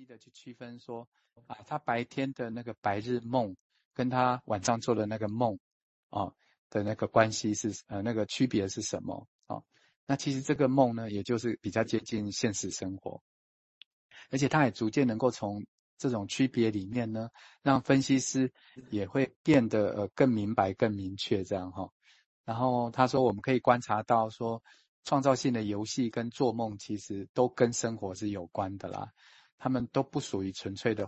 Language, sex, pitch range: Chinese, male, 105-125 Hz